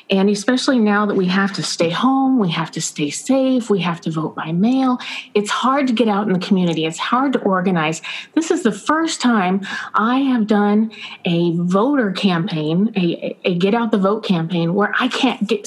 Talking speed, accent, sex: 210 wpm, American, female